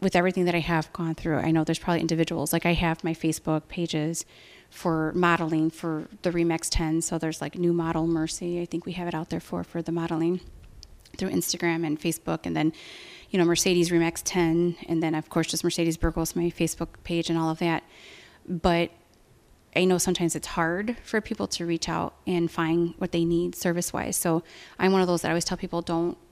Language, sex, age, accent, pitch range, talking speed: English, female, 30-49, American, 165-175 Hz, 215 wpm